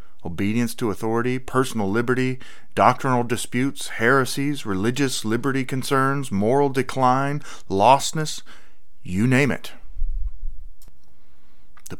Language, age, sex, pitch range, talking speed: English, 30-49, male, 95-125 Hz, 90 wpm